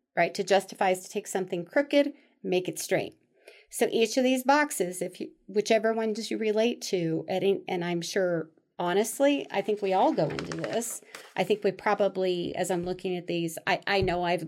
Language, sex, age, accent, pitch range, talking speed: English, female, 40-59, American, 175-215 Hz, 200 wpm